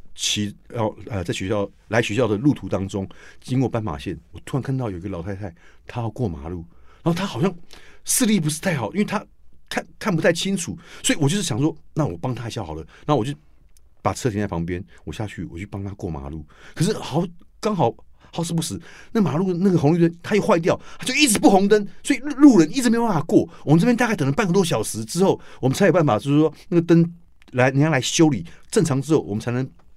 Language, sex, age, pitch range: Chinese, male, 50-69, 100-165 Hz